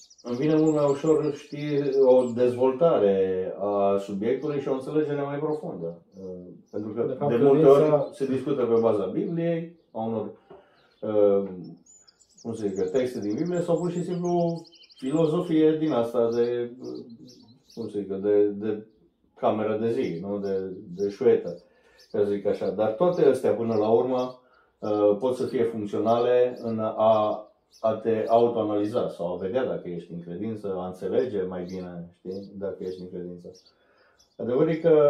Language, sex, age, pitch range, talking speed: Romanian, male, 30-49, 100-145 Hz, 150 wpm